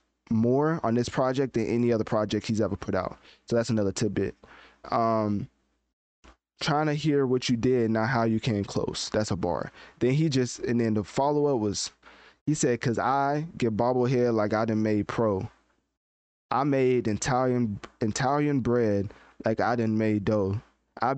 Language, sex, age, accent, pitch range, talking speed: English, male, 20-39, American, 110-135 Hz, 175 wpm